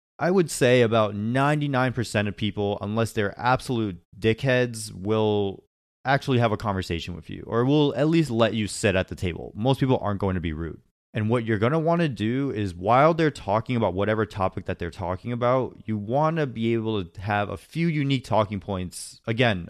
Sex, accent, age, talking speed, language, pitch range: male, American, 30-49, 205 wpm, English, 95-120 Hz